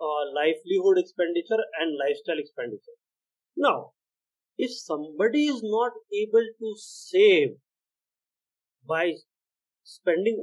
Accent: native